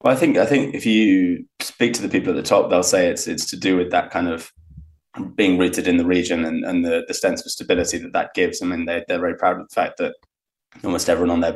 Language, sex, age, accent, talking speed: Danish, male, 20-39, British, 275 wpm